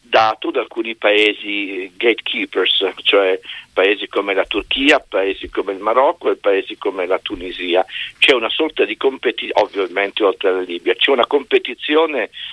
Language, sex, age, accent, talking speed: Italian, male, 50-69, native, 150 wpm